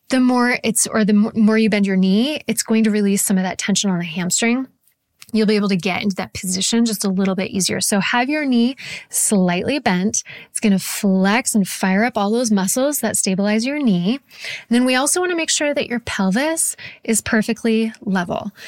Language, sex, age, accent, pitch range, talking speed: English, female, 20-39, American, 195-250 Hz, 220 wpm